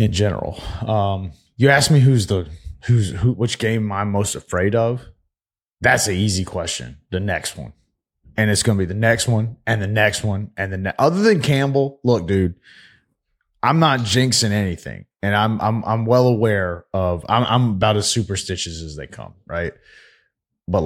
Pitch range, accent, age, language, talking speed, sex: 95-120 Hz, American, 20-39, English, 185 wpm, male